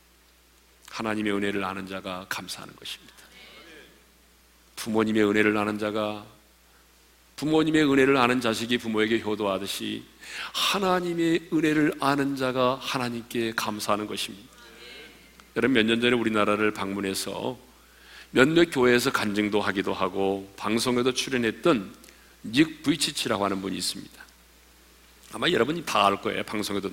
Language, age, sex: Korean, 40-59, male